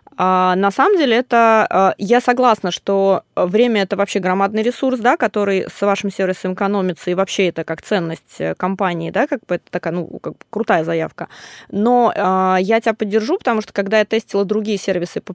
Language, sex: Russian, female